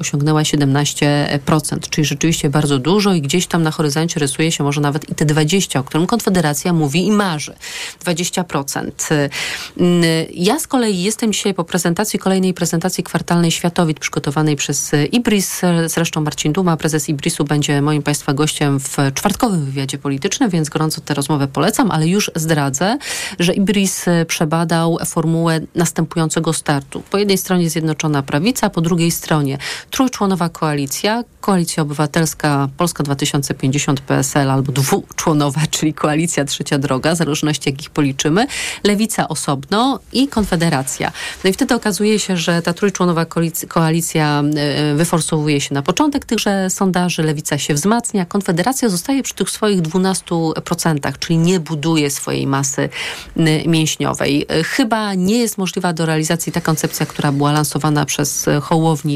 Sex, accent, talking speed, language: female, native, 140 wpm, Polish